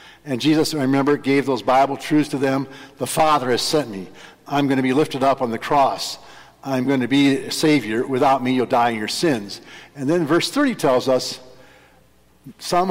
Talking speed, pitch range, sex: 205 wpm, 115-150 Hz, male